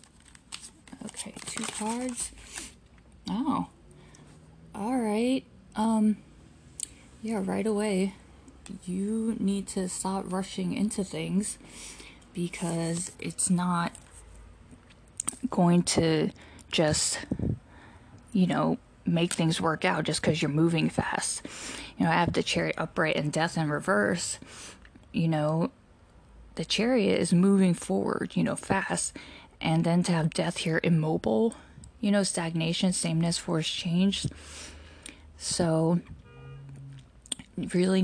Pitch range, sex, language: 150-195 Hz, female, English